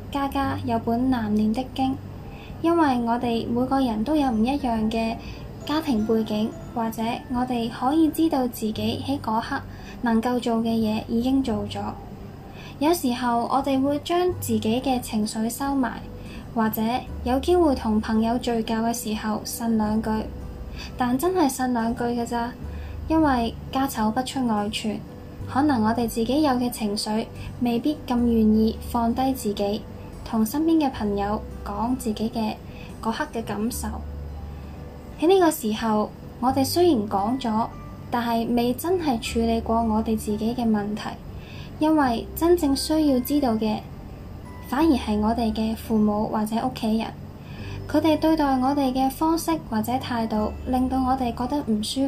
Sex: female